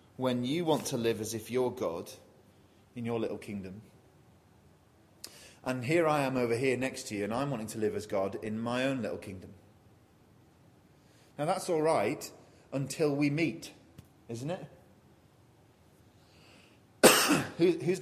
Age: 30-49